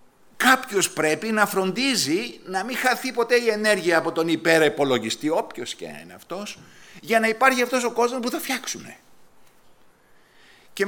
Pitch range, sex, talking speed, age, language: 165-230 Hz, male, 150 wpm, 50-69, Greek